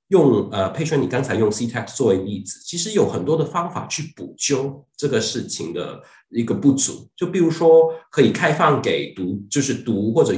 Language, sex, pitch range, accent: Chinese, male, 125-195 Hz, native